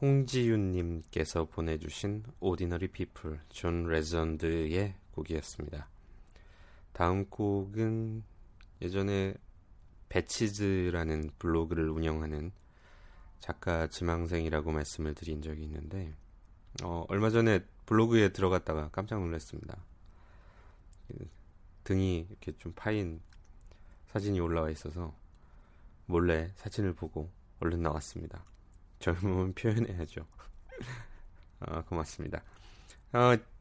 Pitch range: 80-100 Hz